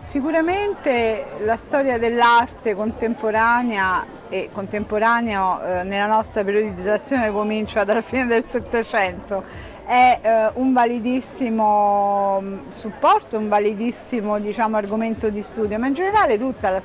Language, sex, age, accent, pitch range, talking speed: Italian, female, 40-59, native, 215-280 Hz, 105 wpm